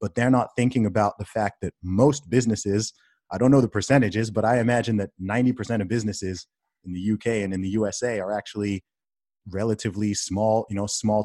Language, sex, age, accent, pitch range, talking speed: English, male, 30-49, American, 95-115 Hz, 190 wpm